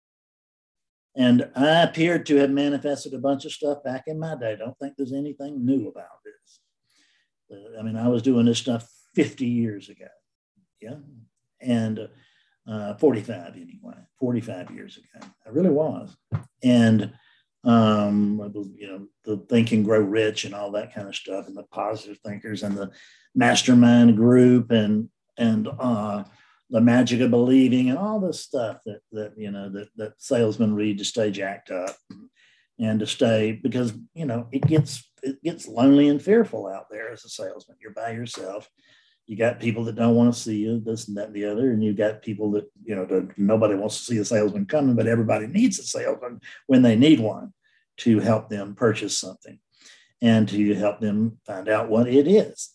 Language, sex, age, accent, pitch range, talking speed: English, male, 50-69, American, 105-135 Hz, 185 wpm